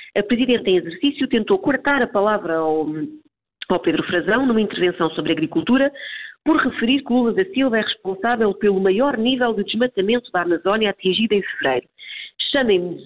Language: Portuguese